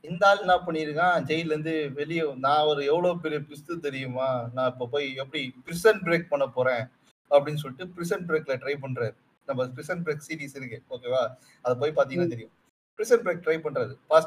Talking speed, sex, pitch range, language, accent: 100 wpm, male, 130-175 Hz, Tamil, native